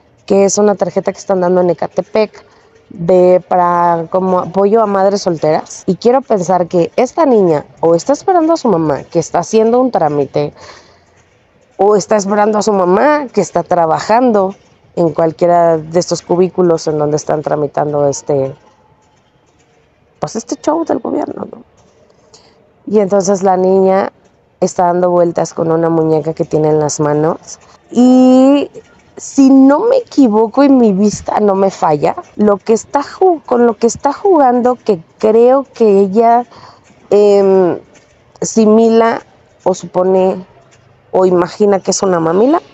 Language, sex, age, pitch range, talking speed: Spanish, female, 30-49, 175-235 Hz, 150 wpm